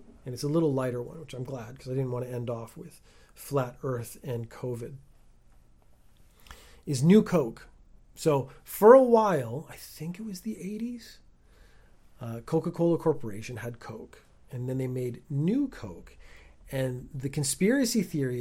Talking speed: 160 wpm